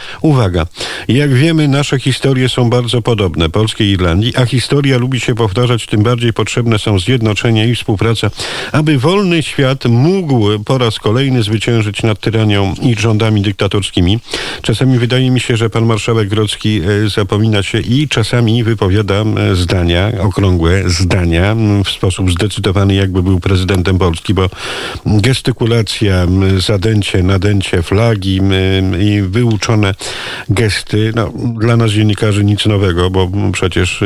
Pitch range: 100-120 Hz